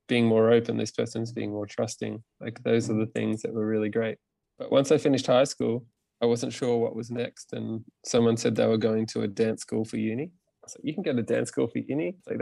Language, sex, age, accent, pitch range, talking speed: English, male, 20-39, Australian, 110-120 Hz, 255 wpm